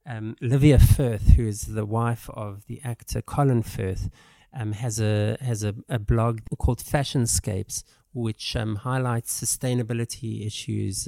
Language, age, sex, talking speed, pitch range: English, 50-69, male, 140 wpm, 105-120 Hz